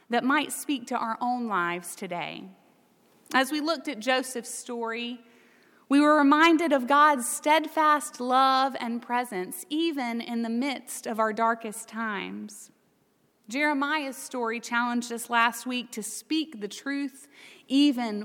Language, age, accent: English, 30-49, American